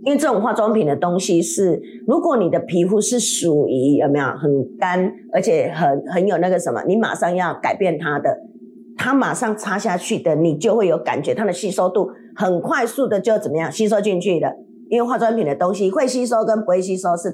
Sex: female